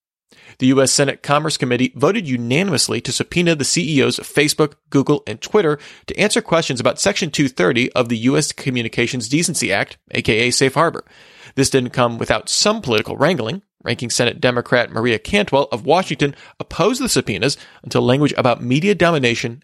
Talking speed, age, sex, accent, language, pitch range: 160 wpm, 40-59, male, American, English, 120-150 Hz